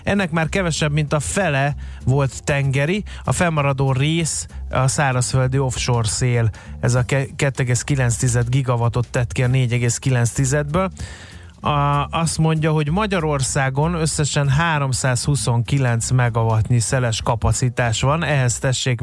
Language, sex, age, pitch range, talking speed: Hungarian, male, 30-49, 120-150 Hz, 110 wpm